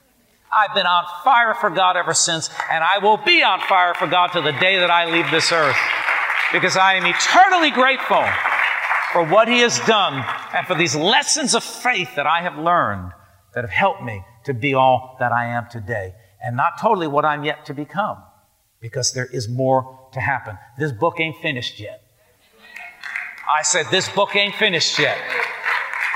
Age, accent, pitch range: 50-69, American, 125-210 Hz